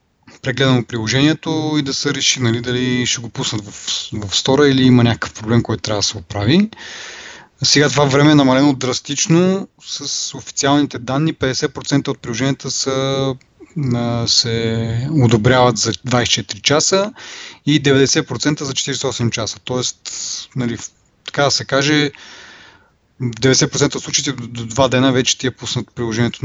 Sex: male